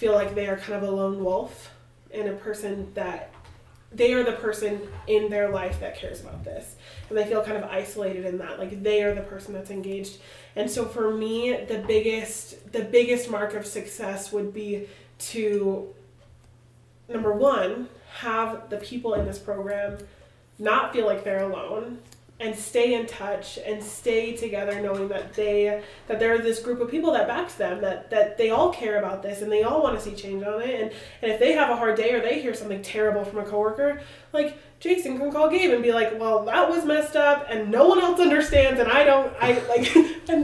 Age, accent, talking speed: 20-39, American, 210 wpm